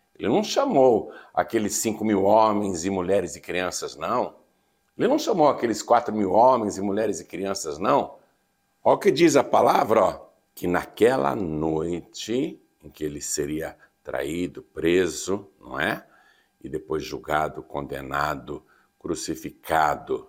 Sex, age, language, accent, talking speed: male, 60-79, Portuguese, Brazilian, 140 wpm